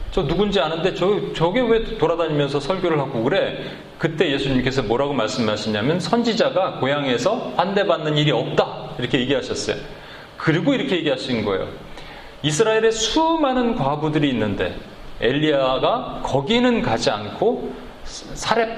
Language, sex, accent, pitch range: Korean, male, native, 150-225 Hz